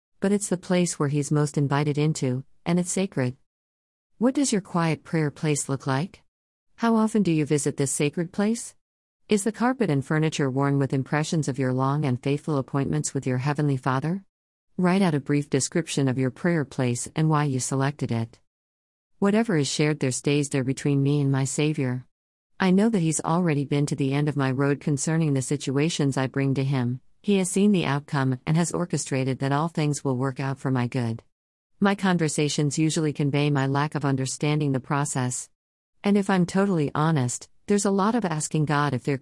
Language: English